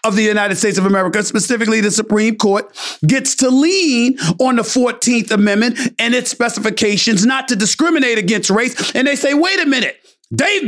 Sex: male